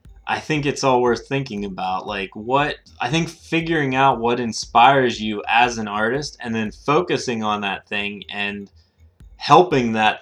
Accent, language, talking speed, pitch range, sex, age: American, English, 165 wpm, 100-125 Hz, male, 20-39